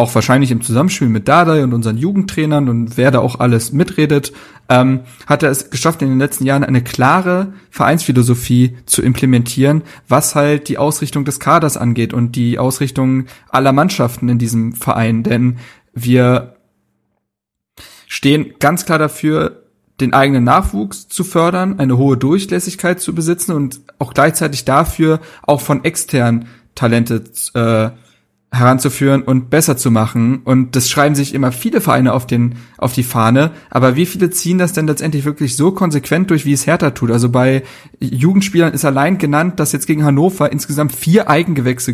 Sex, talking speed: male, 165 wpm